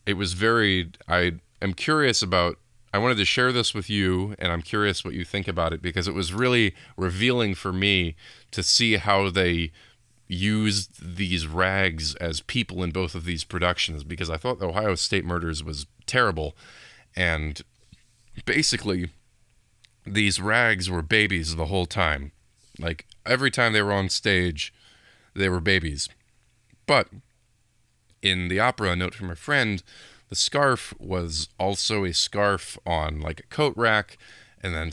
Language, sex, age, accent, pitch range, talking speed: English, male, 20-39, American, 85-115 Hz, 160 wpm